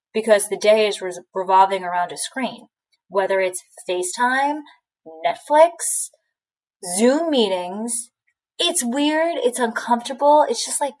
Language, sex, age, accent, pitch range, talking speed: English, female, 20-39, American, 185-245 Hz, 115 wpm